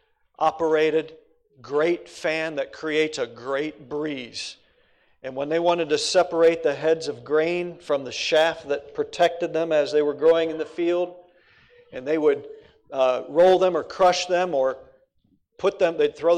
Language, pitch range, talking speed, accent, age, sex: English, 155-240 Hz, 165 wpm, American, 50-69, male